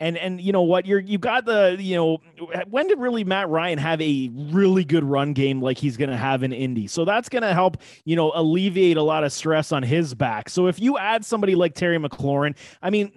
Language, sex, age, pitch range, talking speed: English, male, 30-49, 145-190 Hz, 250 wpm